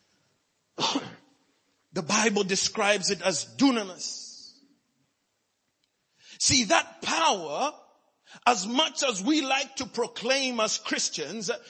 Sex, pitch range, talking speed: male, 250-335 Hz, 90 wpm